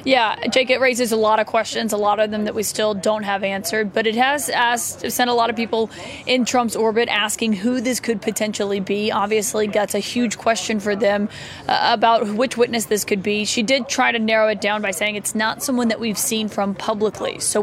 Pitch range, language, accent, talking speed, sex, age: 210-235 Hz, English, American, 230 wpm, female, 20-39